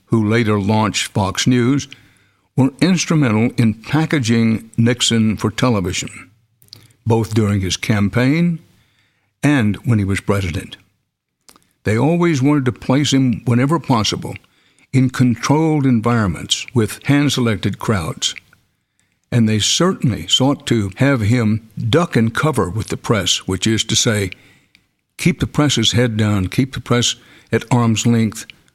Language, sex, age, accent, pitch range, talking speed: English, male, 60-79, American, 105-140 Hz, 130 wpm